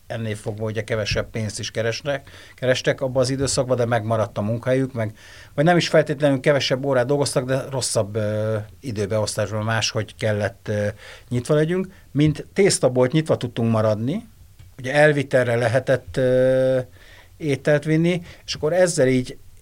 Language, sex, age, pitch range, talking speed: Hungarian, male, 60-79, 110-135 Hz, 140 wpm